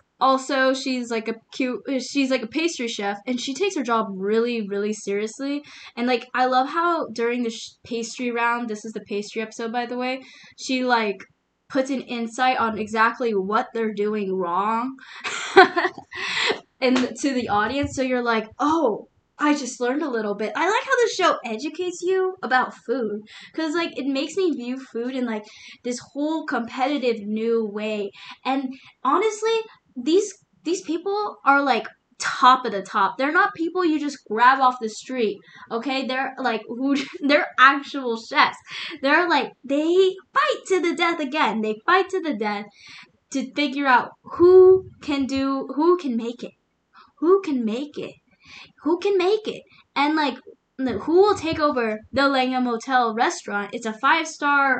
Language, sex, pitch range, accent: English, female, 230-300 Hz, American